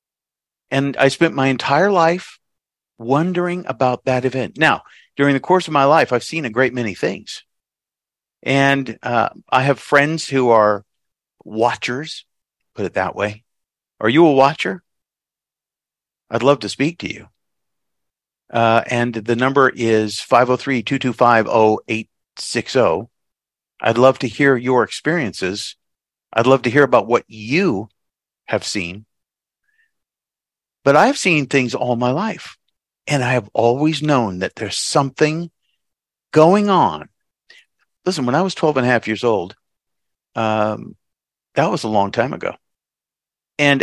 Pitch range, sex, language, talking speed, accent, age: 120-150 Hz, male, English, 140 wpm, American, 50-69